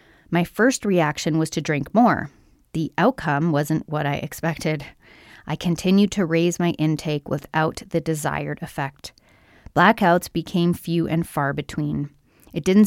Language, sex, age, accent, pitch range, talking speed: English, female, 30-49, American, 150-180 Hz, 145 wpm